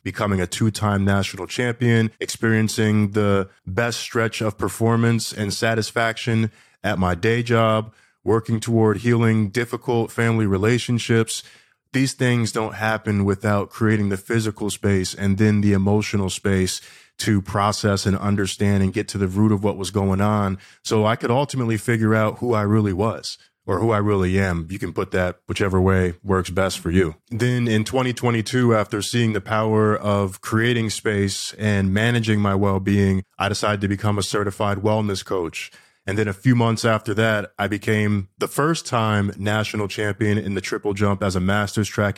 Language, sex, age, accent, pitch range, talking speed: English, male, 20-39, American, 100-110 Hz, 170 wpm